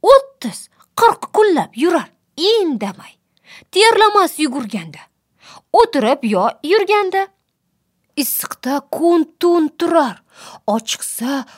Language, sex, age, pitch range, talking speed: English, female, 30-49, 200-310 Hz, 65 wpm